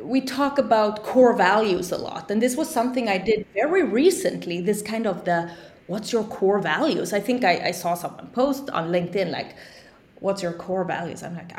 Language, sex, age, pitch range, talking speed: English, female, 20-39, 185-255 Hz, 200 wpm